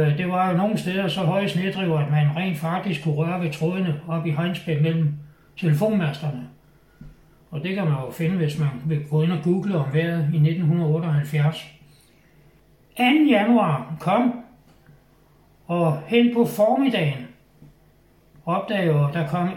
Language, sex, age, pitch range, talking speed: Danish, male, 60-79, 155-195 Hz, 150 wpm